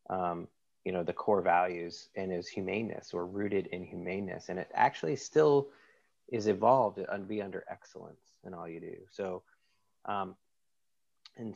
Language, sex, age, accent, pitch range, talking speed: English, male, 30-49, American, 90-105 Hz, 155 wpm